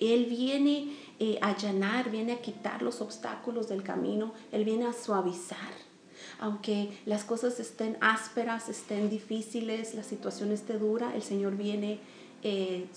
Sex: female